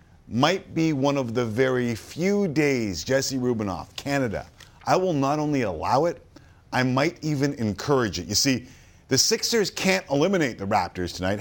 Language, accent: English, American